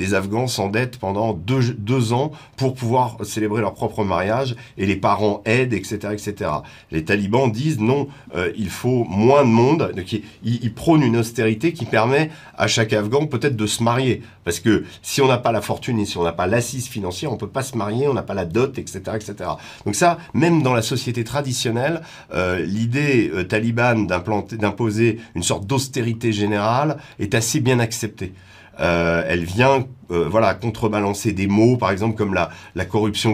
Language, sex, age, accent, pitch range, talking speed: French, male, 40-59, French, 95-125 Hz, 190 wpm